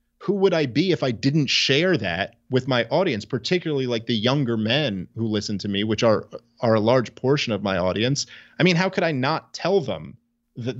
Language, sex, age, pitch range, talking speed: English, male, 30-49, 115-155 Hz, 215 wpm